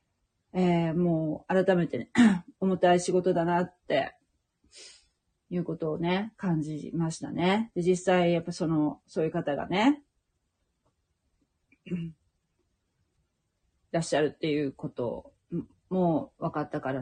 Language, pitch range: Japanese, 160-200 Hz